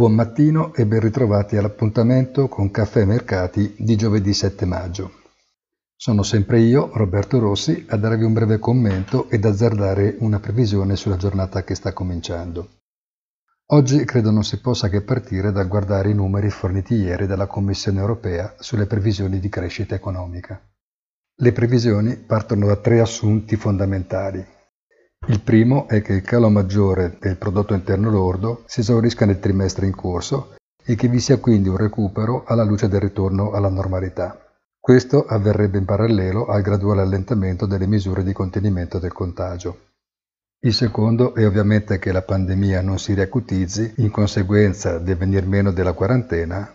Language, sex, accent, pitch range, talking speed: Italian, male, native, 95-115 Hz, 155 wpm